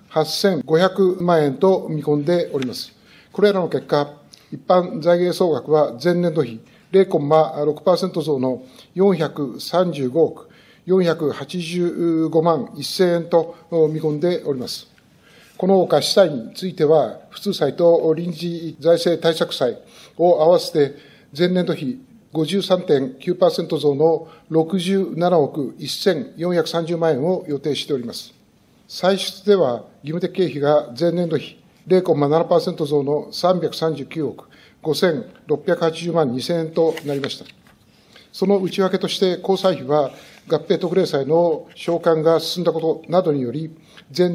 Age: 60-79